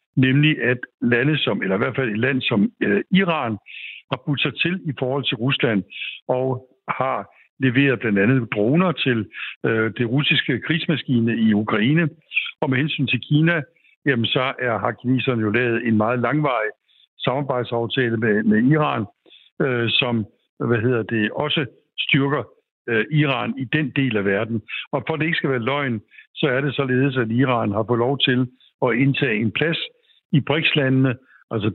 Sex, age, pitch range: male, 60-79, 120-150 Hz